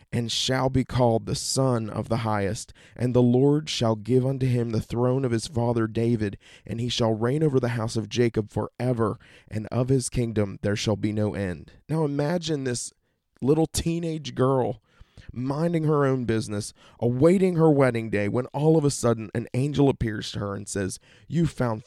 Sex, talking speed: male, 190 wpm